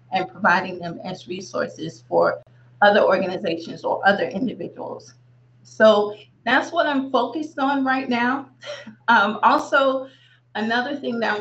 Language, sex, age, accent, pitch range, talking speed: English, female, 30-49, American, 180-230 Hz, 130 wpm